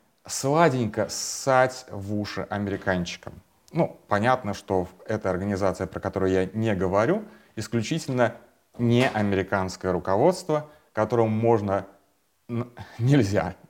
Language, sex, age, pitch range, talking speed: Russian, male, 30-49, 95-125 Hz, 95 wpm